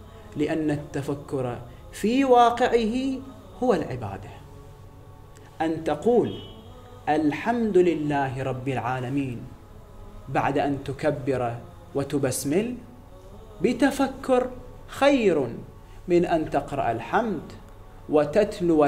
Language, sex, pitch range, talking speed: Arabic, male, 120-190 Hz, 75 wpm